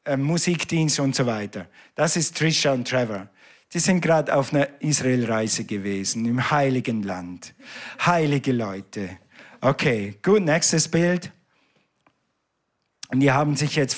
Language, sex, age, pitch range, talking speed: German, male, 50-69, 135-165 Hz, 125 wpm